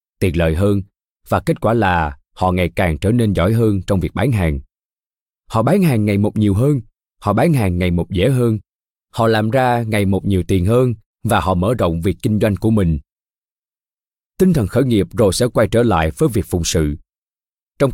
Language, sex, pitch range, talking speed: Vietnamese, male, 90-135 Hz, 210 wpm